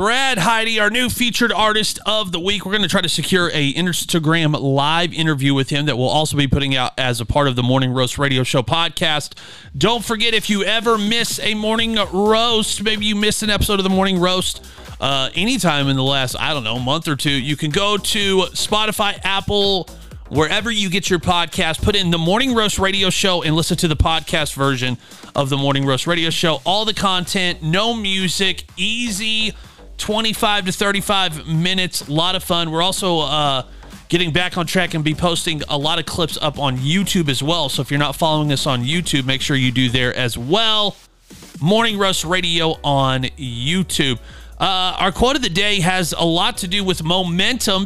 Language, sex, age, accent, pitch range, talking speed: English, male, 30-49, American, 150-205 Hz, 205 wpm